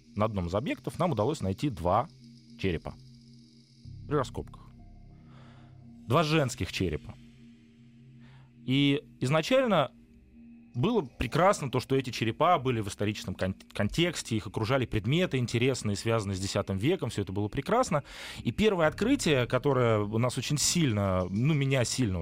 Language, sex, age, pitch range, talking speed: Russian, male, 30-49, 105-140 Hz, 130 wpm